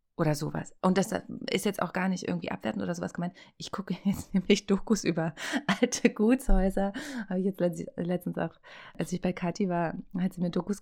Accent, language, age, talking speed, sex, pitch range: German, German, 30-49, 195 wpm, female, 175-215 Hz